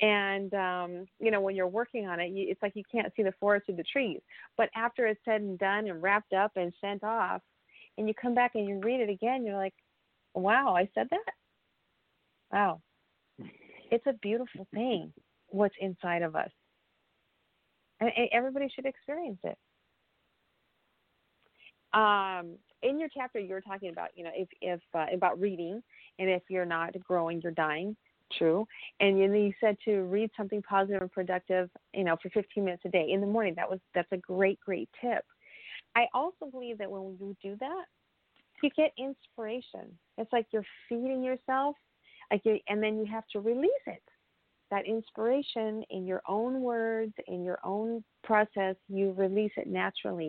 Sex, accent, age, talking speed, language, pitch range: female, American, 40-59, 180 wpm, English, 190-240 Hz